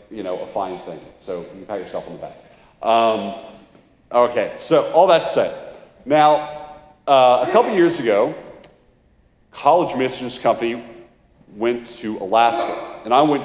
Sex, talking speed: male, 150 wpm